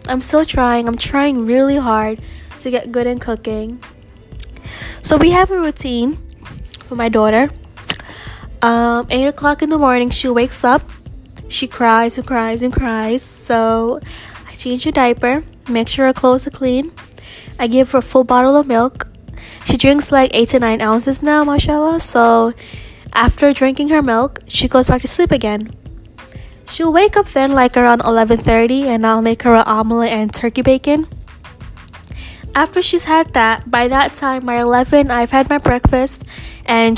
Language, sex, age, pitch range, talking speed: English, female, 10-29, 225-275 Hz, 170 wpm